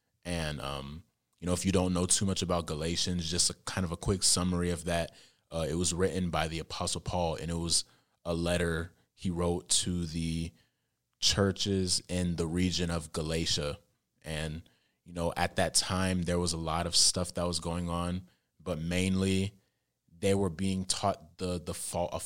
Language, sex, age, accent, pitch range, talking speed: English, male, 20-39, American, 85-95 Hz, 190 wpm